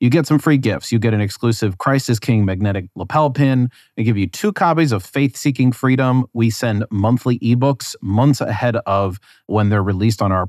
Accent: American